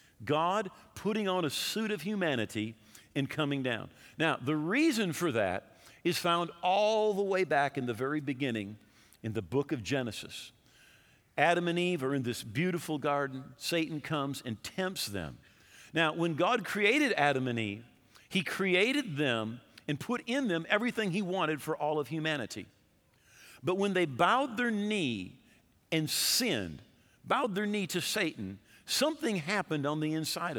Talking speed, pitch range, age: 160 wpm, 140-195 Hz, 50-69